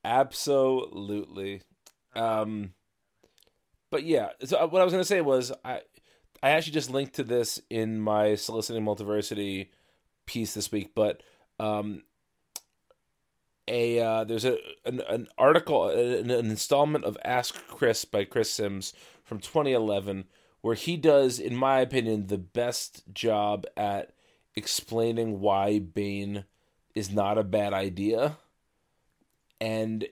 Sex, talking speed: male, 130 wpm